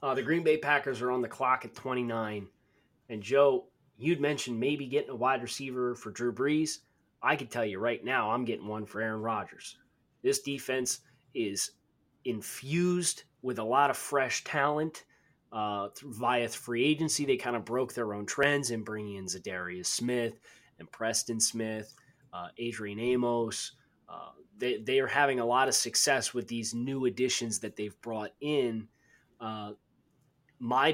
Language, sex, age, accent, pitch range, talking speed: English, male, 20-39, American, 115-140 Hz, 165 wpm